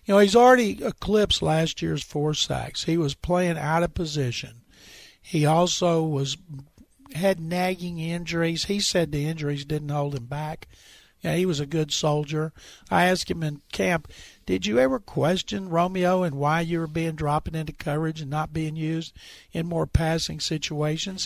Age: 60-79